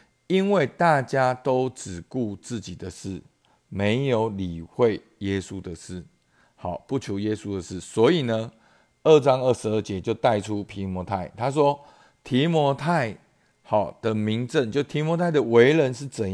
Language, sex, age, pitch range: Chinese, male, 50-69, 100-130 Hz